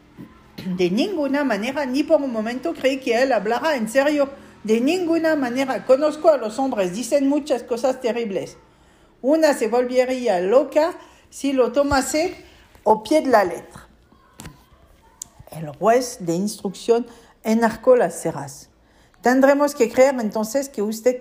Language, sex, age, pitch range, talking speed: Spanish, female, 50-69, 210-275 Hz, 140 wpm